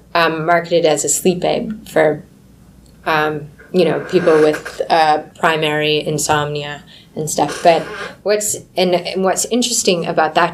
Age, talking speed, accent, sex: 20-39, 140 wpm, American, female